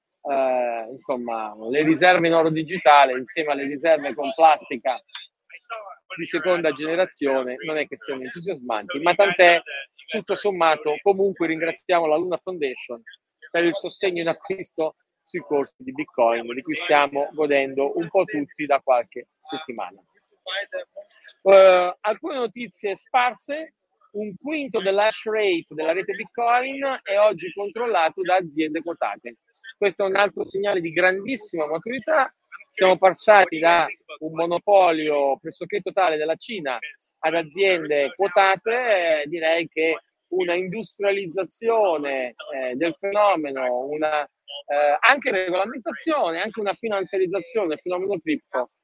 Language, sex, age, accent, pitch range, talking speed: Italian, male, 40-59, native, 150-205 Hz, 125 wpm